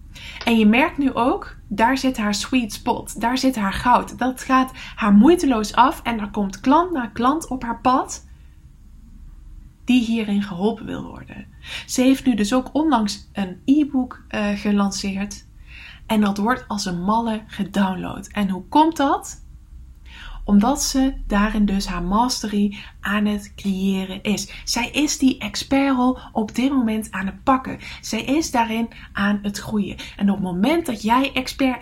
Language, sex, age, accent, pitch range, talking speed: English, female, 10-29, Dutch, 200-250 Hz, 160 wpm